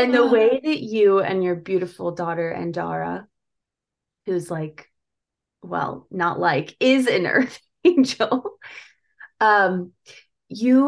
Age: 20-39